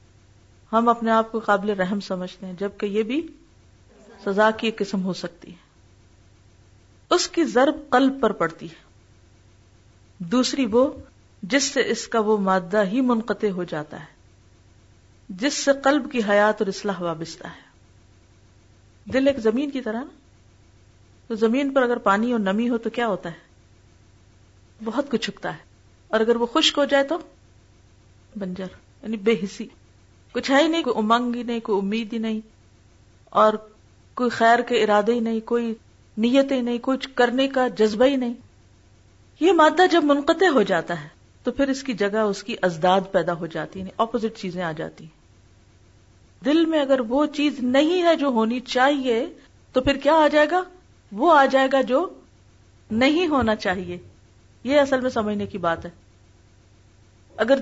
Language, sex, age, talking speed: Urdu, female, 40-59, 170 wpm